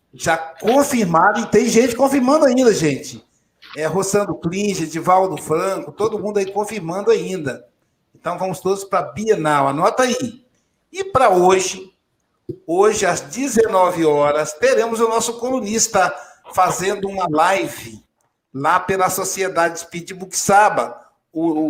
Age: 60-79